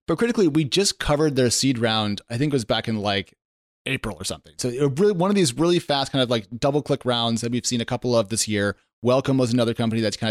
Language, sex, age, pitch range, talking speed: English, male, 30-49, 115-140 Hz, 270 wpm